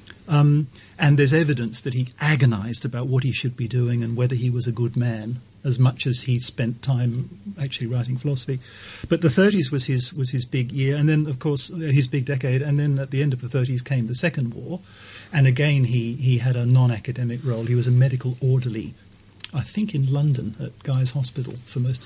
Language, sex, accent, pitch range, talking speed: English, male, British, 120-145 Hz, 215 wpm